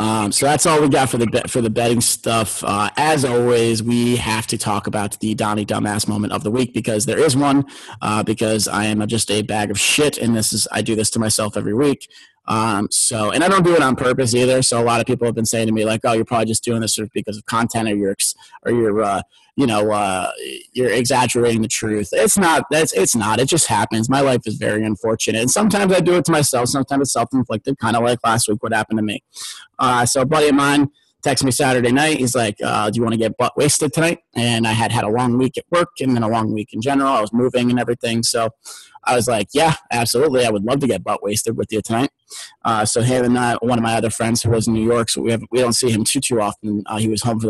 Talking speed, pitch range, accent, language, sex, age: 265 wpm, 110-130 Hz, American, English, male, 30-49